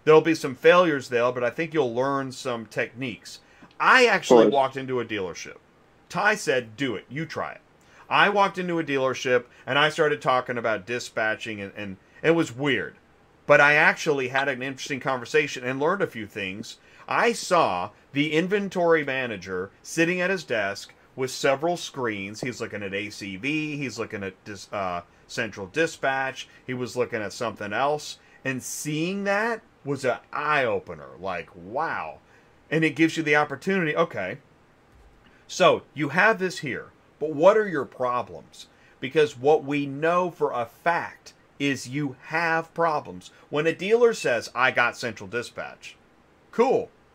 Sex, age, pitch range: male, 30-49, 120-165 Hz